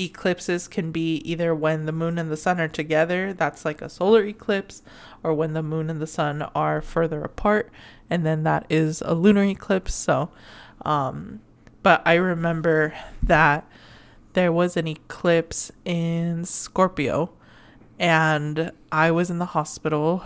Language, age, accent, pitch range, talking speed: English, 20-39, American, 155-175 Hz, 155 wpm